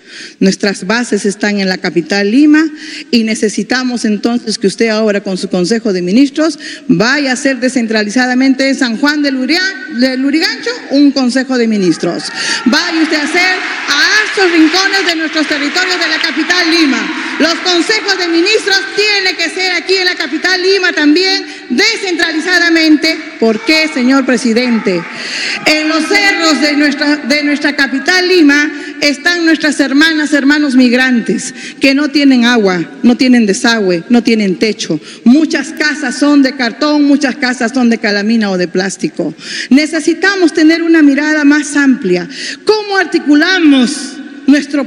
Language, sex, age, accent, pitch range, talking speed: Spanish, female, 40-59, American, 250-325 Hz, 150 wpm